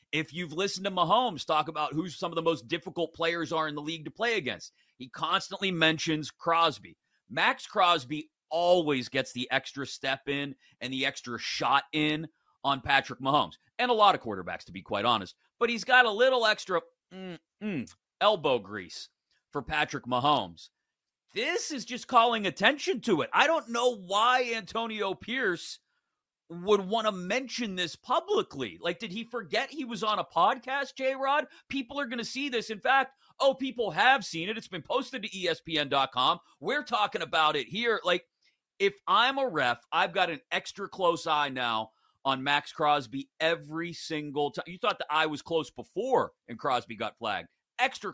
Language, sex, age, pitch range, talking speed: English, male, 30-49, 150-230 Hz, 180 wpm